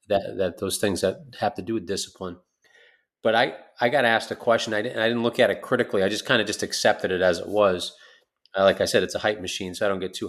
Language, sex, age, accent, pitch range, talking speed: English, male, 30-49, American, 95-115 Hz, 280 wpm